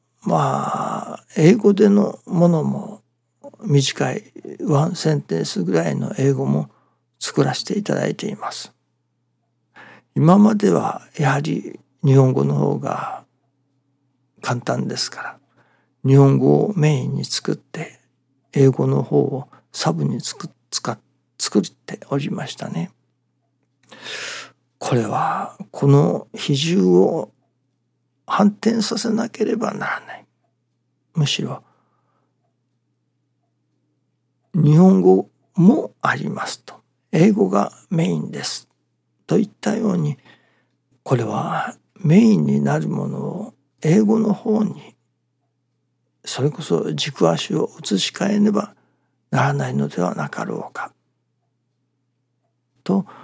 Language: Japanese